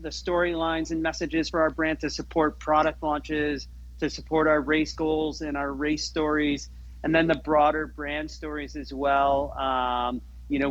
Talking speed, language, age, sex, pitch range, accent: 175 wpm, English, 40-59, male, 130-155 Hz, American